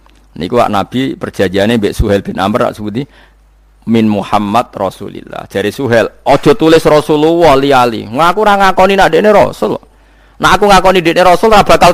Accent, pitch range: native, 105-145 Hz